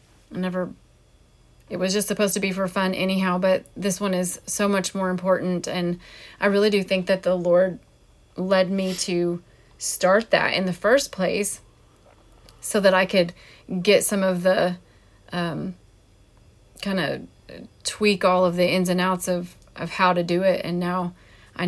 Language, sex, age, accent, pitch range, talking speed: English, female, 30-49, American, 180-195 Hz, 175 wpm